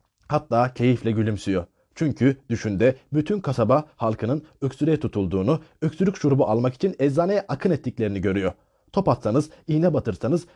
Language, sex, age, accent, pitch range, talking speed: Turkish, male, 40-59, native, 105-150 Hz, 125 wpm